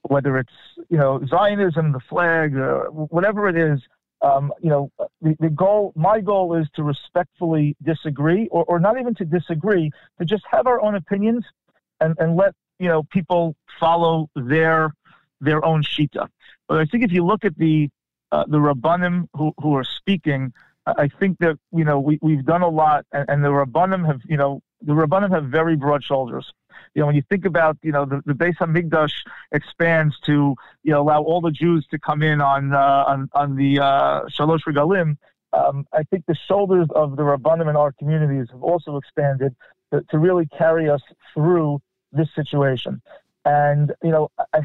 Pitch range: 145-175 Hz